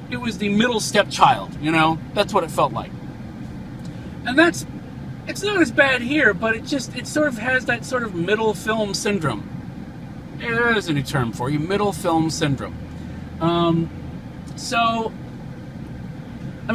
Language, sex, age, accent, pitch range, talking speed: English, male, 40-59, American, 155-230 Hz, 160 wpm